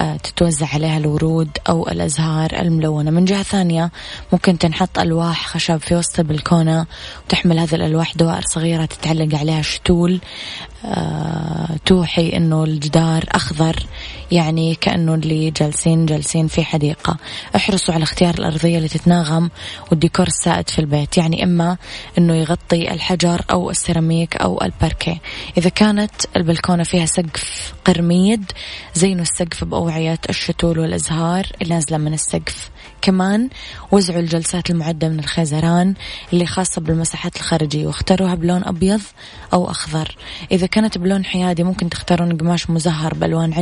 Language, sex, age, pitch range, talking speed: Arabic, female, 20-39, 160-180 Hz, 125 wpm